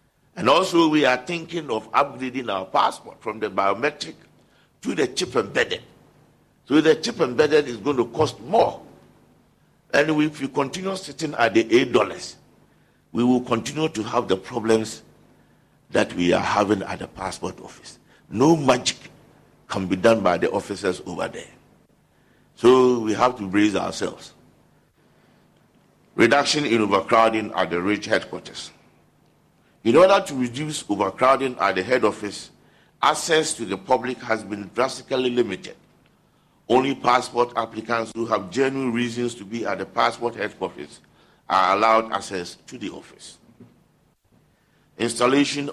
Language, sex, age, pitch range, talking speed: English, male, 60-79, 110-135 Hz, 145 wpm